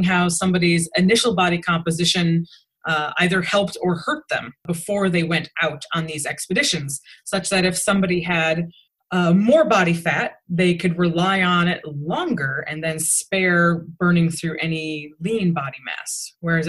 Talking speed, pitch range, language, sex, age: 155 wpm, 155-190 Hz, English, female, 20-39